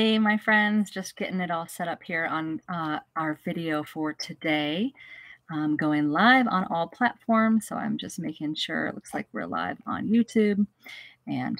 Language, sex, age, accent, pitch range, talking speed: English, female, 40-59, American, 150-205 Hz, 180 wpm